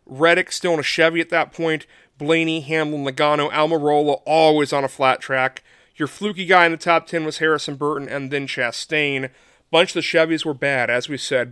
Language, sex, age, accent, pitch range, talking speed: English, male, 40-59, American, 140-165 Hz, 205 wpm